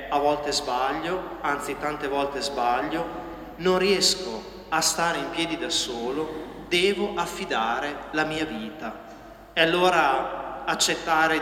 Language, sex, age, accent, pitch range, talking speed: Italian, male, 40-59, native, 145-185 Hz, 120 wpm